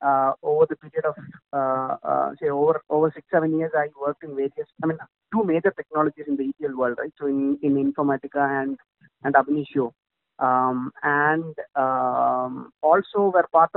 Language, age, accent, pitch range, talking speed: English, 30-49, Indian, 140-170 Hz, 175 wpm